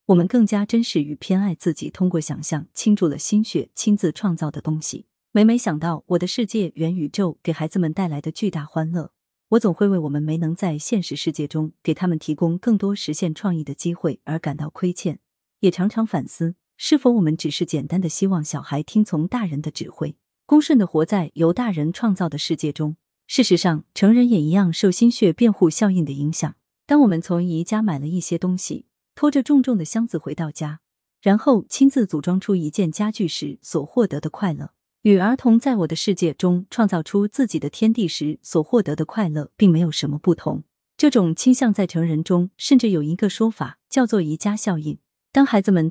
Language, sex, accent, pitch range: Chinese, female, native, 155-205 Hz